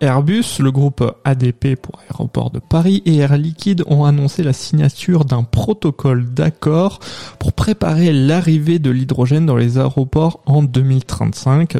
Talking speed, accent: 140 wpm, French